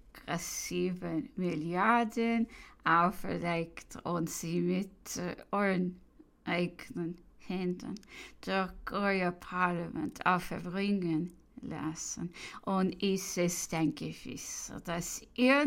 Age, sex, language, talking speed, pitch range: 20-39, female, English, 80 wpm, 180-245 Hz